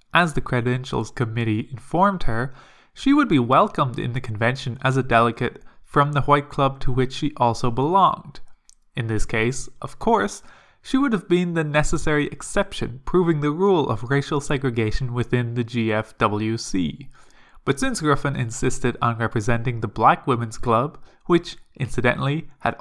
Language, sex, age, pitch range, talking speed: English, male, 20-39, 120-160 Hz, 155 wpm